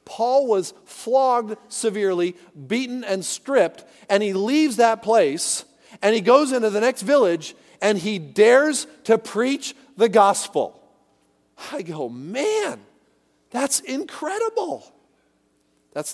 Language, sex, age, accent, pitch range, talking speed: English, male, 40-59, American, 150-230 Hz, 120 wpm